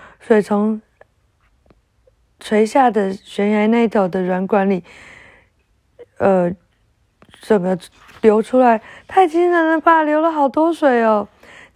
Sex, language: female, Chinese